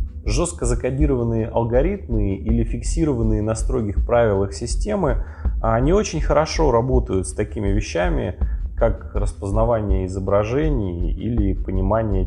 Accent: native